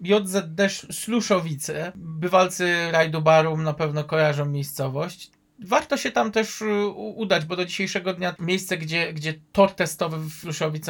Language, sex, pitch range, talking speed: Polish, male, 160-210 Hz, 130 wpm